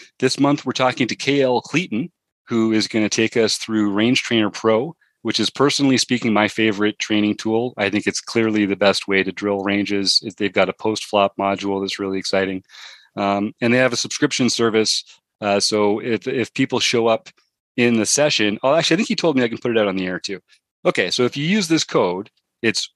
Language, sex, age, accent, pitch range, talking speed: English, male, 30-49, American, 100-120 Hz, 220 wpm